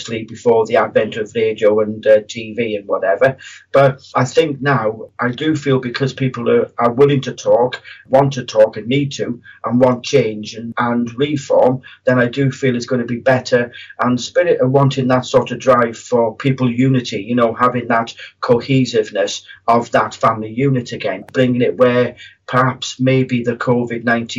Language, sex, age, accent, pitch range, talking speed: English, male, 40-59, British, 115-135 Hz, 180 wpm